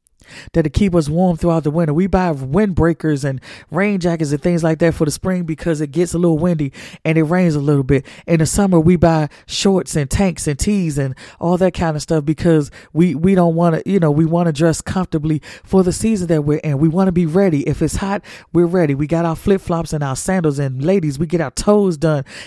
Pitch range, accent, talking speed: 160-215 Hz, American, 250 wpm